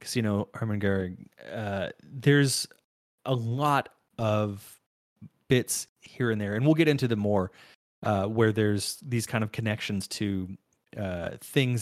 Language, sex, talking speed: English, male, 150 wpm